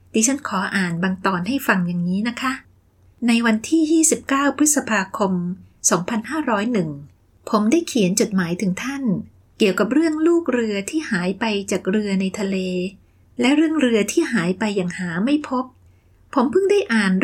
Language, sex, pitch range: Thai, female, 190-270 Hz